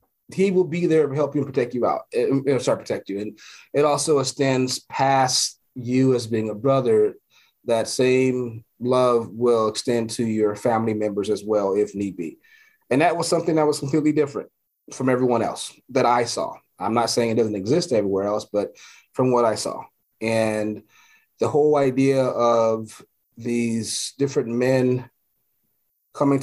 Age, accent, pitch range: 30-49, American, 110-135 Hz